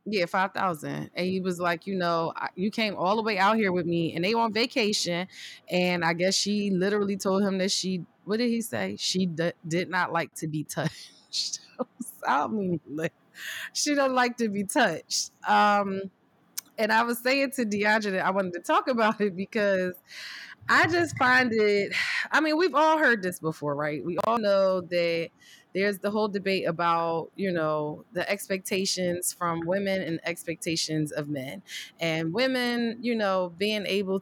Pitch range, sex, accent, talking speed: 170-215 Hz, female, American, 185 wpm